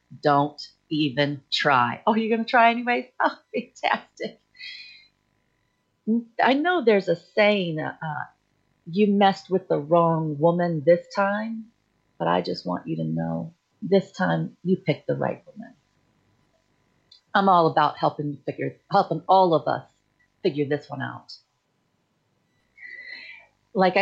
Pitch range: 155-210 Hz